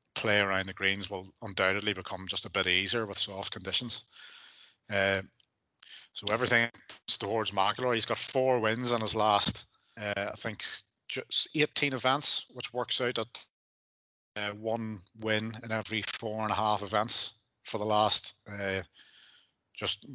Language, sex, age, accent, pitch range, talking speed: English, male, 30-49, British, 100-115 Hz, 150 wpm